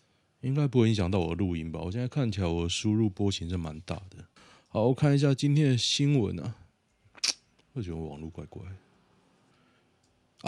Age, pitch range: 20-39, 90-120 Hz